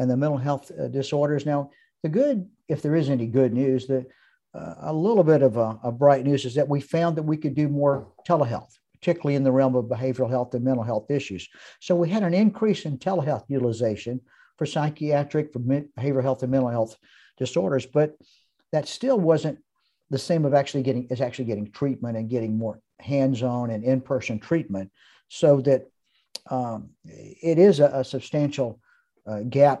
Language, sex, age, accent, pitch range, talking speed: English, male, 50-69, American, 130-155 Hz, 185 wpm